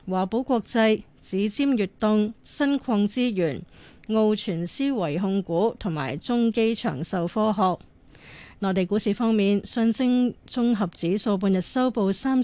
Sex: female